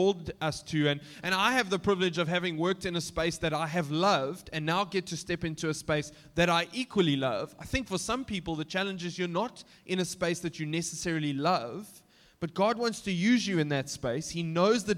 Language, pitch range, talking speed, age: English, 160-190 Hz, 235 wpm, 20-39